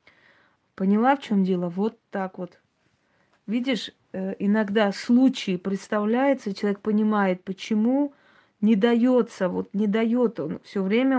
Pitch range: 190-230 Hz